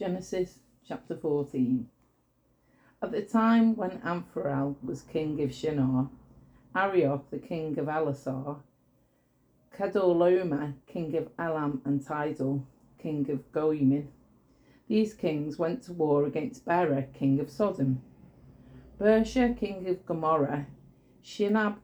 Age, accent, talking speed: 40-59, British, 115 wpm